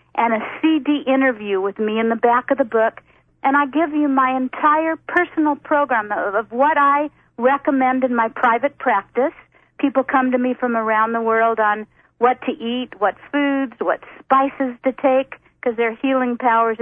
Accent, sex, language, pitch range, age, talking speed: American, female, English, 230-280 Hz, 50-69, 185 wpm